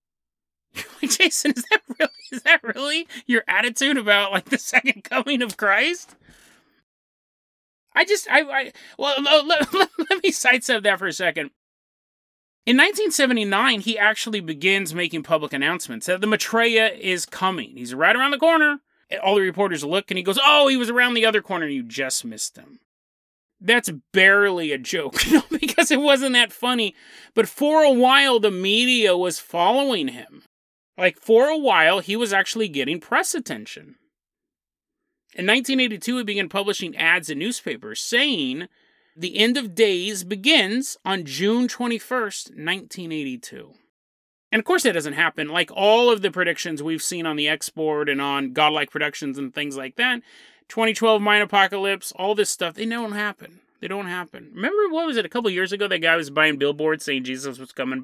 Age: 30-49